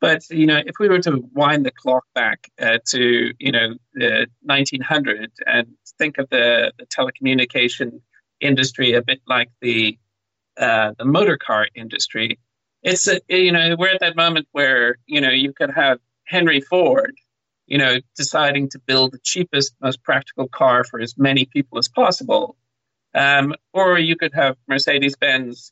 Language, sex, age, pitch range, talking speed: English, male, 40-59, 125-160 Hz, 160 wpm